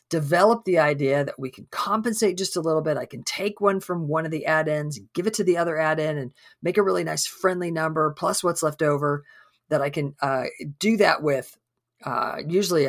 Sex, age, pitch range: female, 40-59, 155-215 Hz